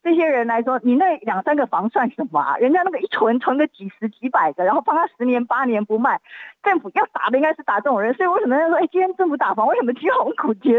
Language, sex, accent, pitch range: Chinese, female, native, 205-285 Hz